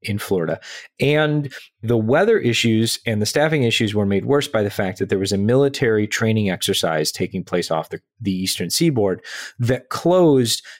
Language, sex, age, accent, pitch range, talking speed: English, male, 30-49, American, 100-135 Hz, 180 wpm